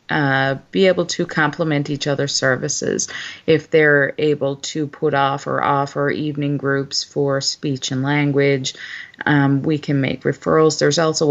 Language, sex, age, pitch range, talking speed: English, female, 30-49, 135-155 Hz, 155 wpm